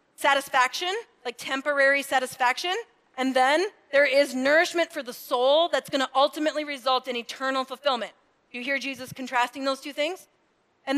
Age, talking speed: 30-49, 155 wpm